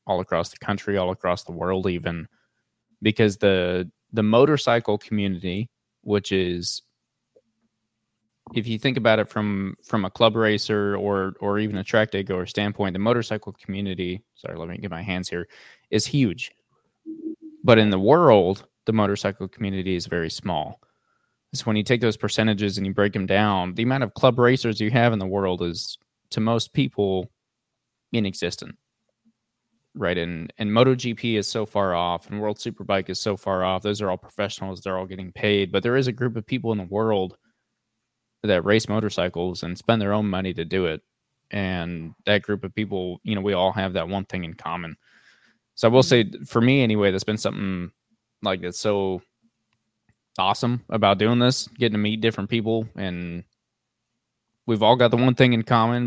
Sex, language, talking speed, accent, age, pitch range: male, English, 185 wpm, American, 20-39, 95-115 Hz